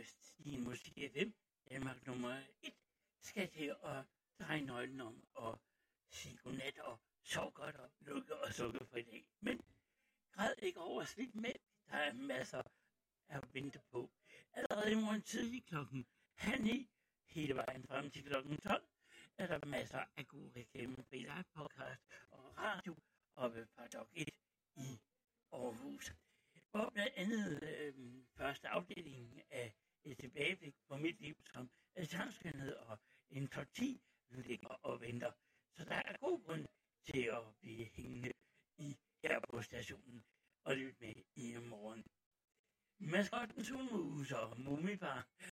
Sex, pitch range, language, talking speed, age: male, 120-175 Hz, Italian, 140 wpm, 60-79